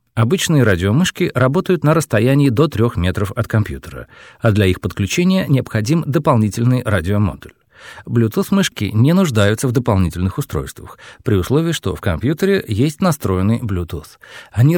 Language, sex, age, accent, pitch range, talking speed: Russian, male, 40-59, native, 95-145 Hz, 135 wpm